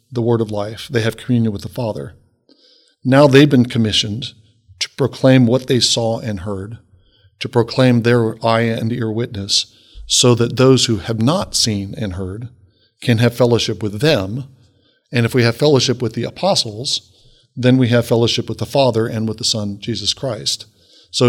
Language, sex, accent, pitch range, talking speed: English, male, American, 105-125 Hz, 180 wpm